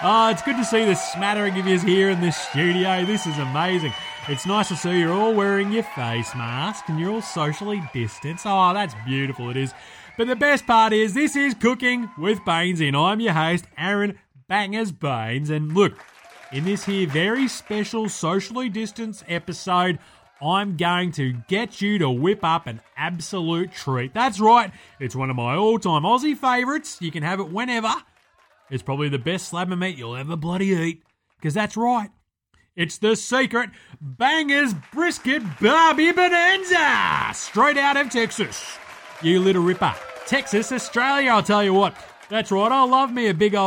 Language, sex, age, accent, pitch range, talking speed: English, male, 30-49, Australian, 165-225 Hz, 175 wpm